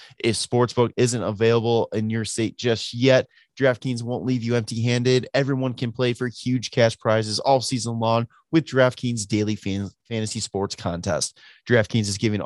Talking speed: 165 wpm